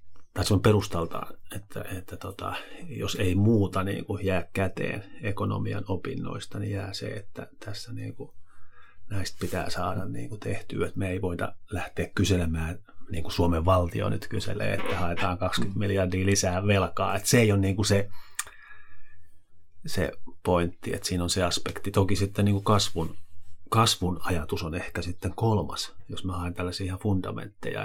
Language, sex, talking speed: Finnish, male, 165 wpm